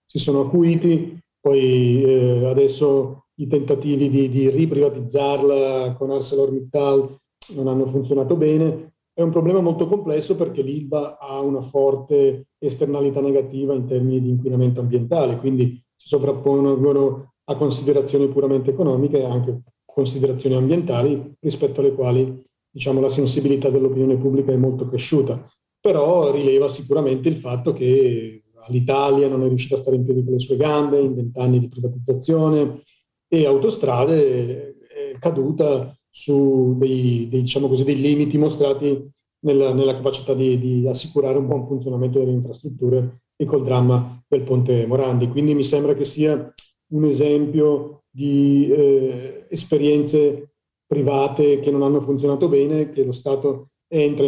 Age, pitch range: 40-59, 130-145 Hz